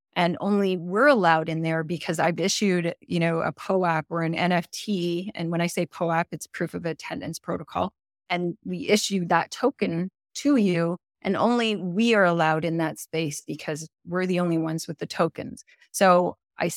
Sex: female